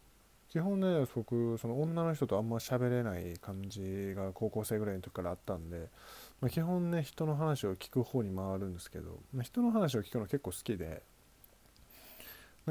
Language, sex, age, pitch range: Japanese, male, 20-39, 100-135 Hz